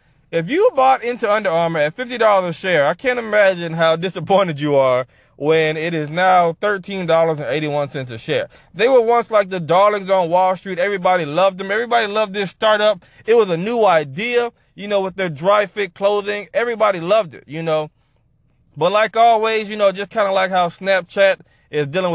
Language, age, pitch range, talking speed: English, 20-39, 155-215 Hz, 190 wpm